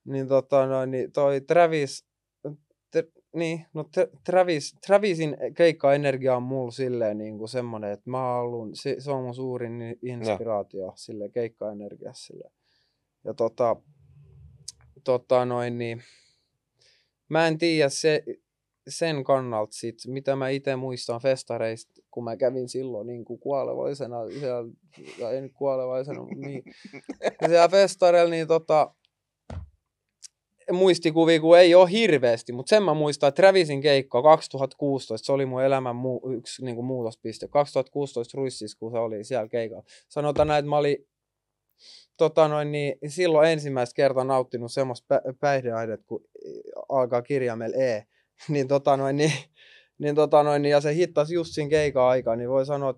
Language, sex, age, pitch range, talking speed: Finnish, male, 20-39, 120-150 Hz, 135 wpm